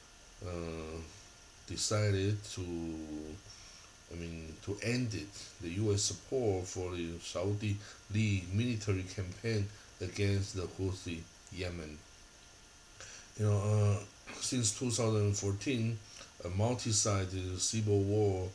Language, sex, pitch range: Chinese, male, 90-110 Hz